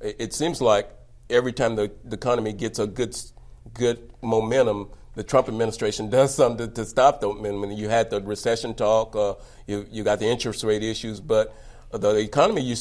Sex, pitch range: male, 100-115 Hz